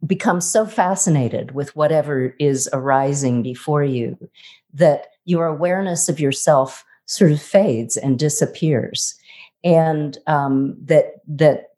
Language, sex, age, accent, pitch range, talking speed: English, female, 50-69, American, 140-170 Hz, 115 wpm